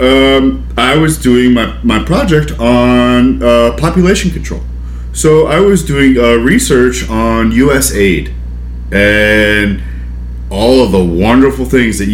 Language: English